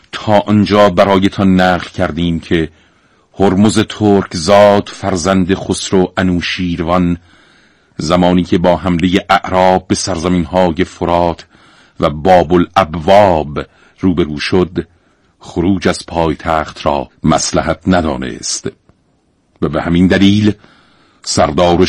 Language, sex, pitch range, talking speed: Persian, male, 85-95 Hz, 105 wpm